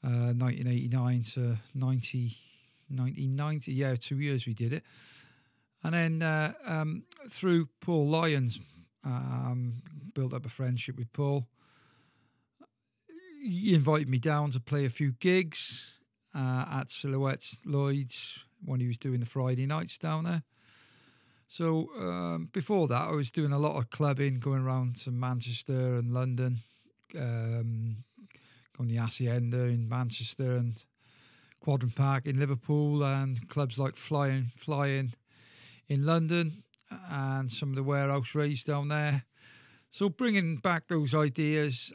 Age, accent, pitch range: 40-59, British, 125-150 Hz